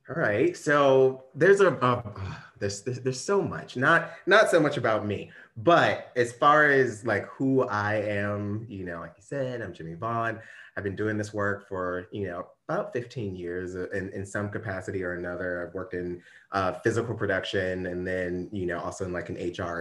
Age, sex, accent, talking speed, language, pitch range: 30-49, male, American, 195 wpm, English, 90-115 Hz